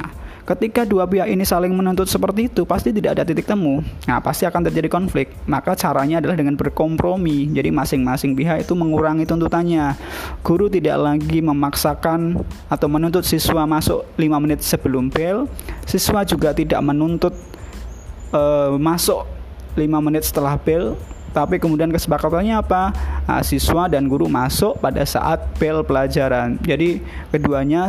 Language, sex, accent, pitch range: Indonesian, male, native, 135-175 Hz